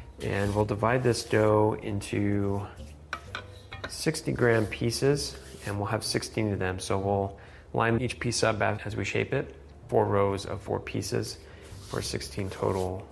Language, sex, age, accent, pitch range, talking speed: English, male, 30-49, American, 100-120 Hz, 150 wpm